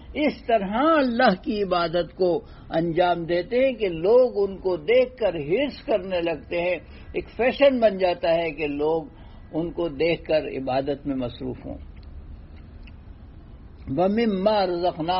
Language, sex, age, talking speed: Urdu, male, 60-79, 140 wpm